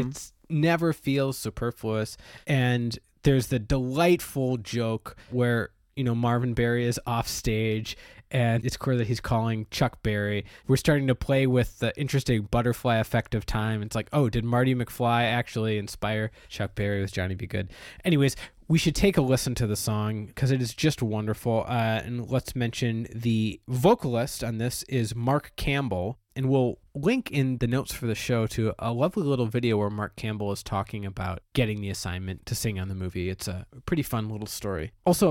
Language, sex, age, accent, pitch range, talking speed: English, male, 20-39, American, 110-130 Hz, 185 wpm